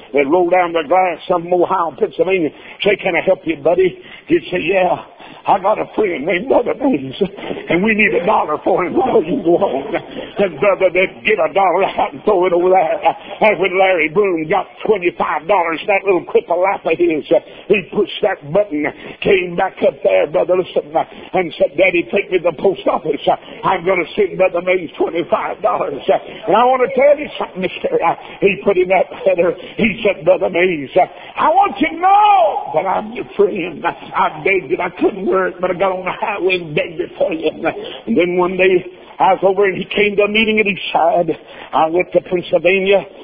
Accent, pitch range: American, 180-220 Hz